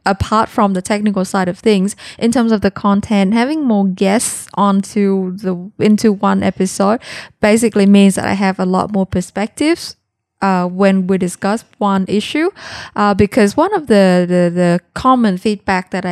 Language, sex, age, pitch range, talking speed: Vietnamese, female, 20-39, 185-215 Hz, 170 wpm